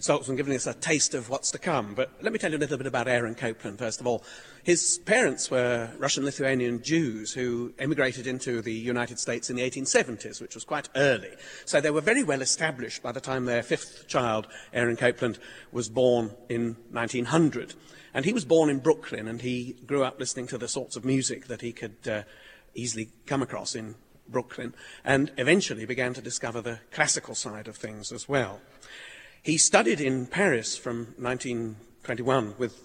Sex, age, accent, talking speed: male, 40-59, British, 190 wpm